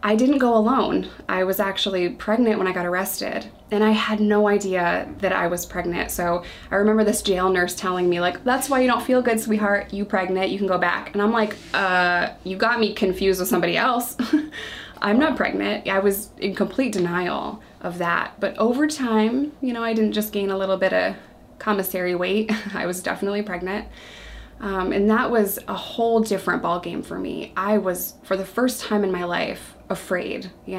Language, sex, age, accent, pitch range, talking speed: English, female, 20-39, American, 185-215 Hz, 205 wpm